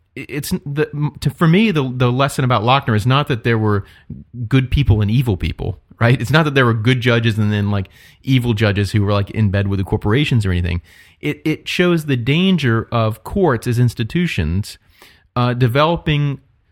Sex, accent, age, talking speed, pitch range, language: male, American, 30-49, 195 wpm, 100-130 Hz, English